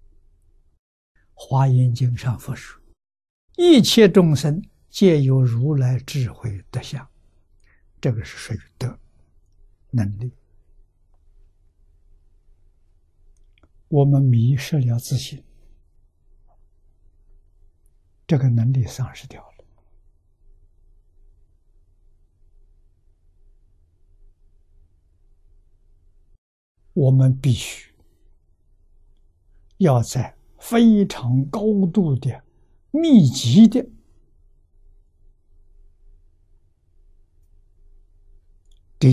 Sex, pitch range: male, 80-125 Hz